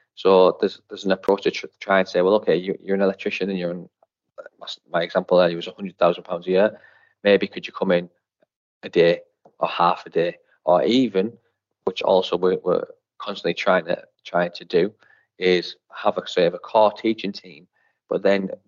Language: English